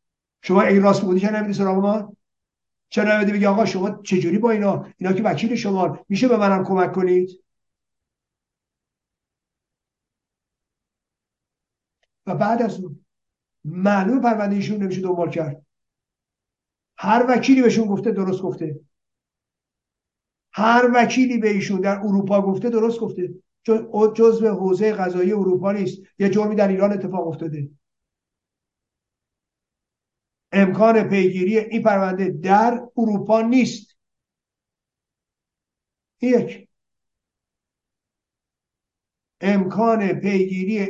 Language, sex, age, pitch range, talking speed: Persian, male, 50-69, 180-215 Hz, 100 wpm